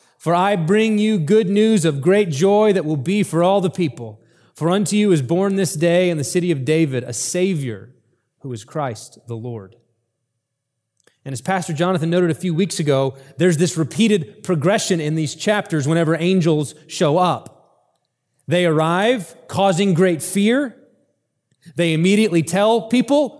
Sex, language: male, English